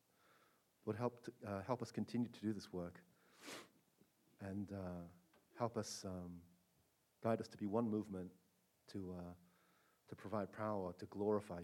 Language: Korean